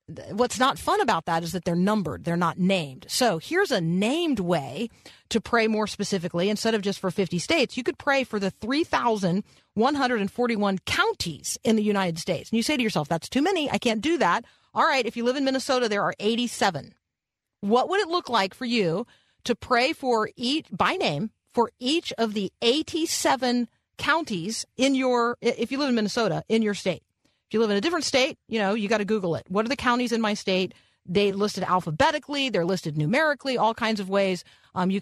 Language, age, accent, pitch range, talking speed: English, 40-59, American, 195-255 Hz, 210 wpm